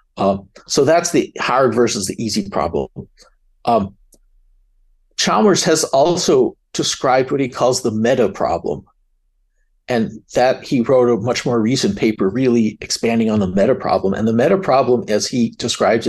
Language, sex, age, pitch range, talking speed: English, male, 50-69, 100-135 Hz, 155 wpm